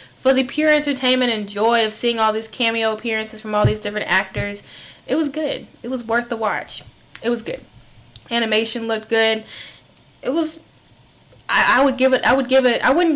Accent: American